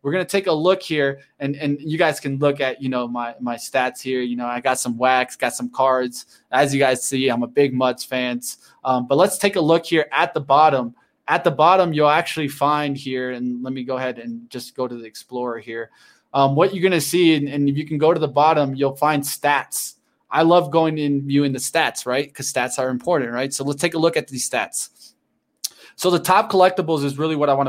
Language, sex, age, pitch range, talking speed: English, male, 20-39, 130-170 Hz, 250 wpm